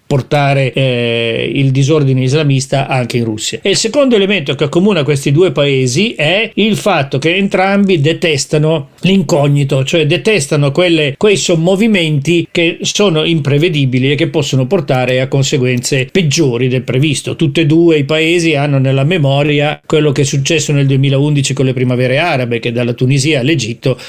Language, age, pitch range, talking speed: Italian, 40-59, 135-175 Hz, 155 wpm